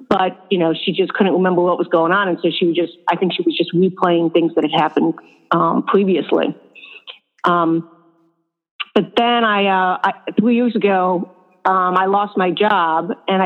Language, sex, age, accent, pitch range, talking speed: English, female, 50-69, American, 175-205 Hz, 190 wpm